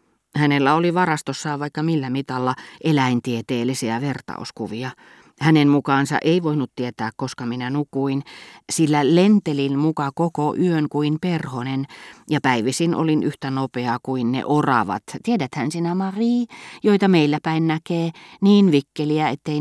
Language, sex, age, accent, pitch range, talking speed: Finnish, female, 30-49, native, 130-170 Hz, 125 wpm